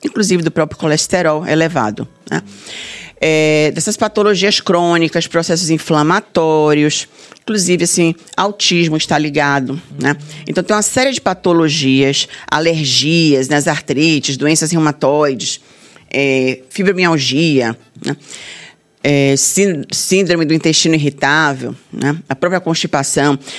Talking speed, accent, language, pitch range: 105 wpm, Brazilian, Portuguese, 150-185 Hz